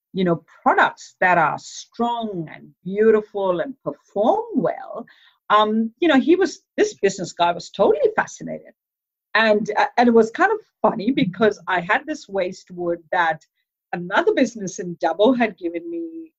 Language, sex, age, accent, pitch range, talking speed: English, female, 50-69, Indian, 170-240 Hz, 160 wpm